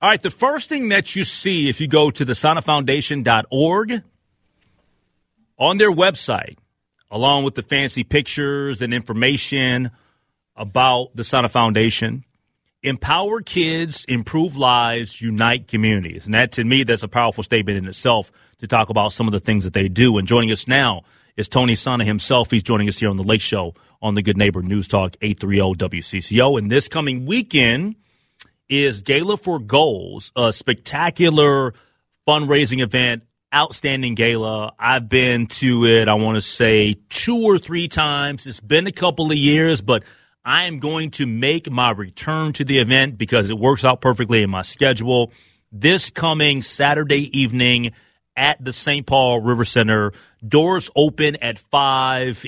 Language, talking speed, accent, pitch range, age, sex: English, 160 wpm, American, 110-145 Hz, 30-49, male